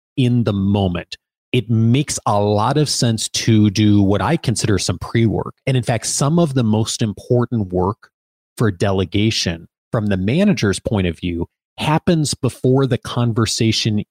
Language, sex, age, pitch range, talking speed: English, male, 30-49, 105-135 Hz, 155 wpm